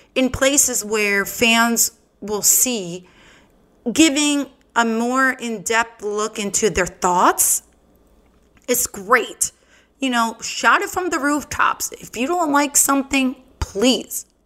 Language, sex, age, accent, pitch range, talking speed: English, female, 30-49, American, 225-295 Hz, 120 wpm